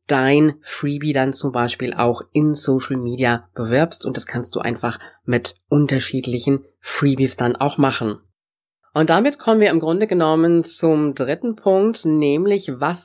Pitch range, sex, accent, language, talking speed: 130-175 Hz, female, German, German, 150 wpm